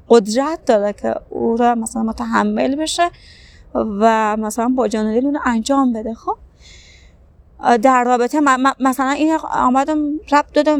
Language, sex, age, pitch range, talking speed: Persian, female, 30-49, 225-290 Hz, 140 wpm